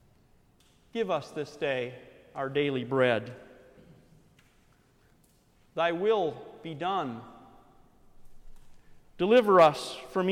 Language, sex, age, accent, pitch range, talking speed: English, male, 40-59, American, 155-225 Hz, 80 wpm